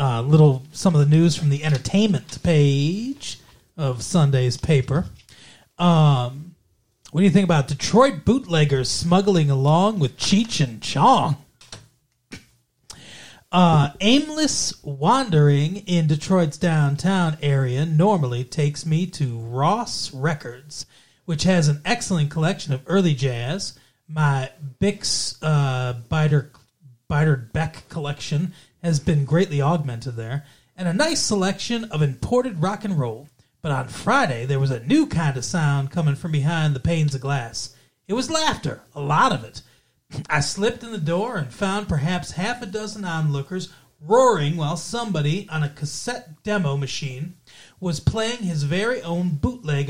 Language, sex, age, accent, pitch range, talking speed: English, male, 30-49, American, 135-180 Hz, 145 wpm